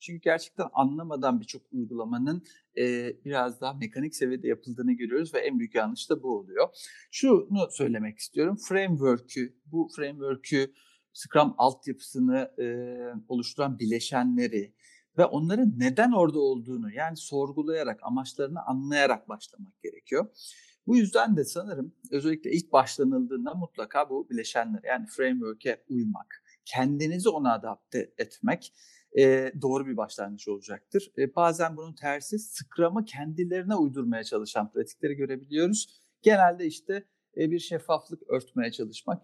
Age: 50-69